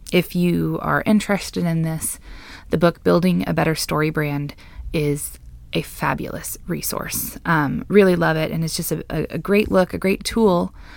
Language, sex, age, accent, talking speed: English, female, 20-39, American, 170 wpm